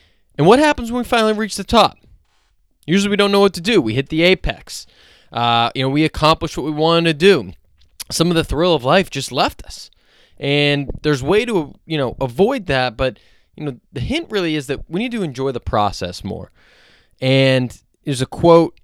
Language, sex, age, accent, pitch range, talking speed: English, male, 20-39, American, 110-155 Hz, 210 wpm